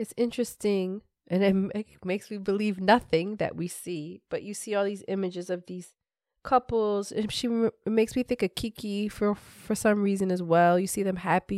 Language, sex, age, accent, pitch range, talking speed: English, female, 20-39, American, 175-215 Hz, 195 wpm